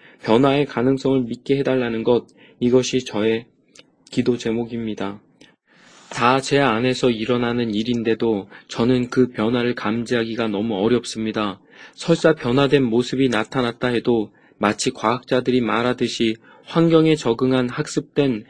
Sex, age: male, 20-39